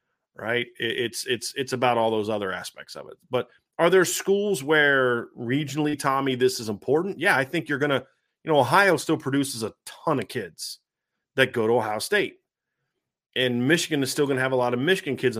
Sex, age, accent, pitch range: male, 30-49, American, 125-170 Hz